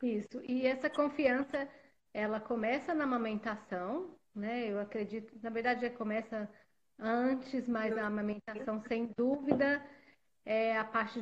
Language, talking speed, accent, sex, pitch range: Portuguese, 130 wpm, Brazilian, female, 225-260 Hz